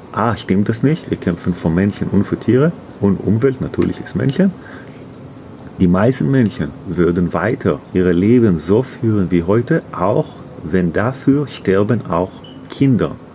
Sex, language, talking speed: male, German, 155 wpm